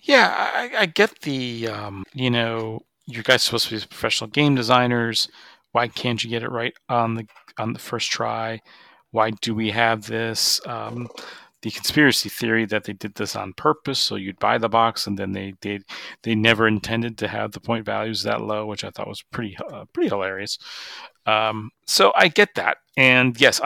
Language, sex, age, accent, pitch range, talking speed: English, male, 40-59, American, 105-120 Hz, 200 wpm